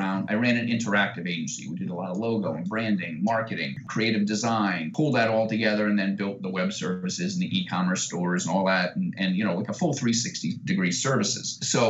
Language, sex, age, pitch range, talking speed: English, male, 30-49, 105-135 Hz, 215 wpm